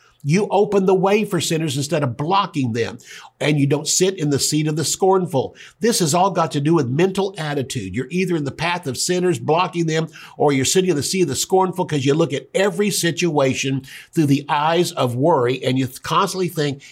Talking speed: 220 wpm